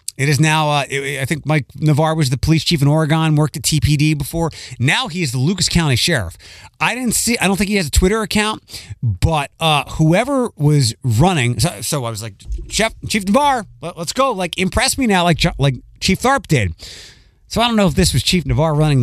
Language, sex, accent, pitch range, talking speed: English, male, American, 120-180 Hz, 225 wpm